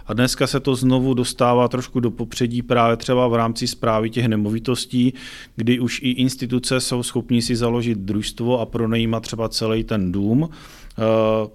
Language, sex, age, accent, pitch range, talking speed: Czech, male, 40-59, native, 105-120 Hz, 160 wpm